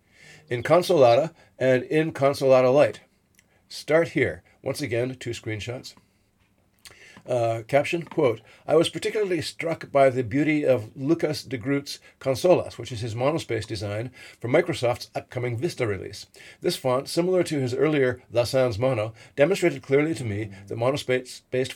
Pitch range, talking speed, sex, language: 110-140 Hz, 140 wpm, male, English